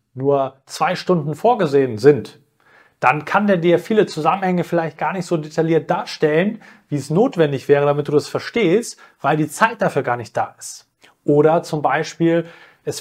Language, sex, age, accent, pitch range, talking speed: German, male, 30-49, German, 150-180 Hz, 170 wpm